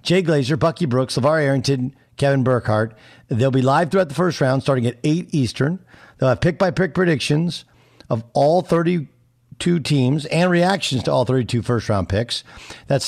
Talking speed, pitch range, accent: 160 wpm, 120-155 Hz, American